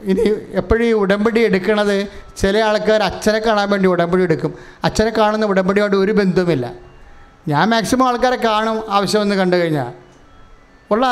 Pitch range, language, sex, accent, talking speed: 175-215 Hz, English, male, Indian, 140 wpm